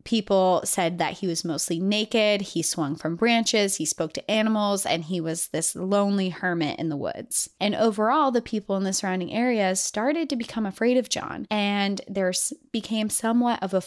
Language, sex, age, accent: English, female, 20-39, American